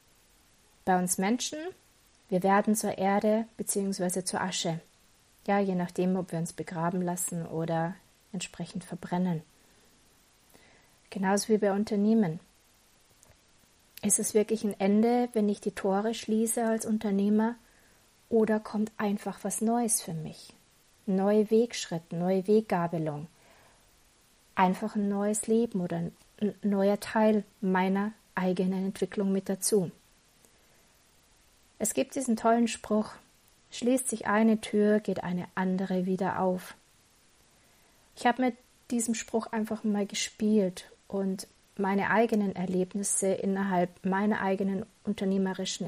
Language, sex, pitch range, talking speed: German, female, 185-215 Hz, 120 wpm